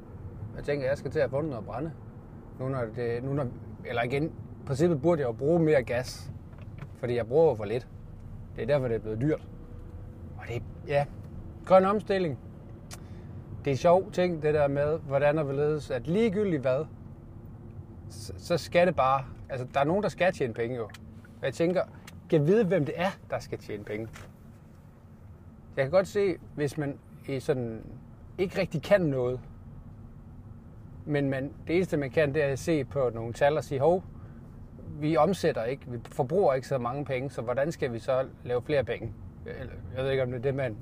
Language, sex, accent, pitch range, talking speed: Danish, male, native, 110-145 Hz, 195 wpm